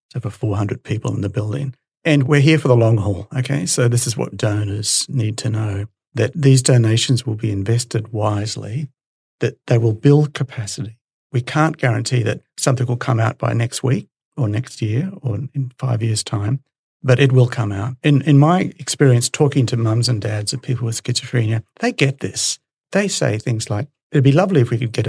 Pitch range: 115-135 Hz